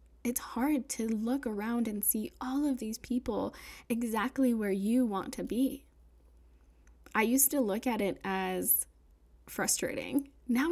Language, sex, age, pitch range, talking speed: English, female, 10-29, 195-255 Hz, 145 wpm